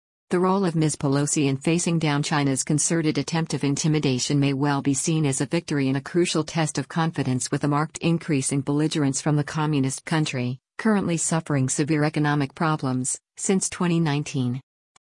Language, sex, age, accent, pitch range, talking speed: English, female, 50-69, American, 140-160 Hz, 170 wpm